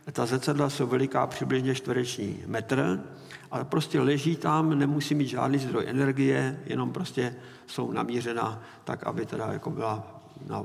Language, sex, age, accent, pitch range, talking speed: Czech, male, 50-69, native, 125-150 Hz, 145 wpm